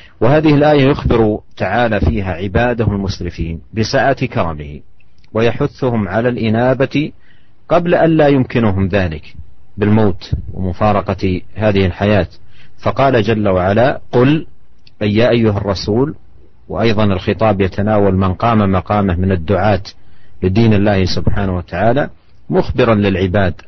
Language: Indonesian